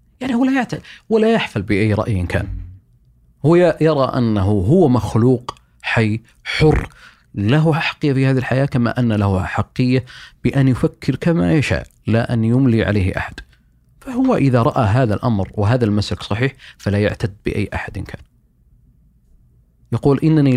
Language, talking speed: Arabic, 140 wpm